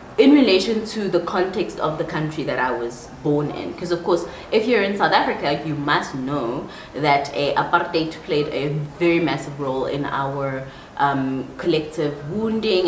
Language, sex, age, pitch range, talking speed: English, female, 20-39, 140-170 Hz, 170 wpm